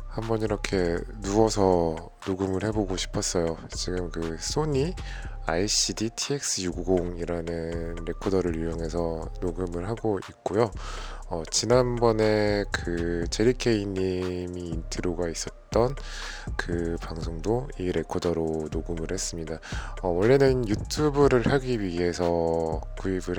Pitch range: 85-105 Hz